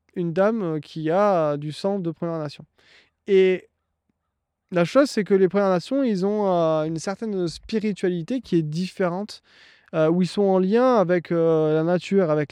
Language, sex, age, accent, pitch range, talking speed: French, male, 20-39, French, 155-195 Hz, 175 wpm